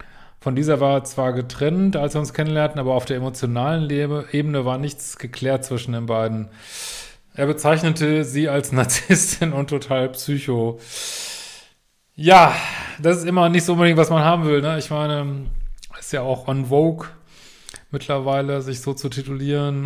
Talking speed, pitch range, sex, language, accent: 165 wpm, 130-150 Hz, male, German, German